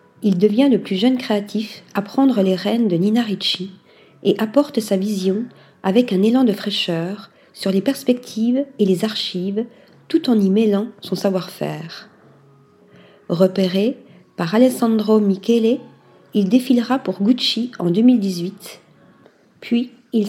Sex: female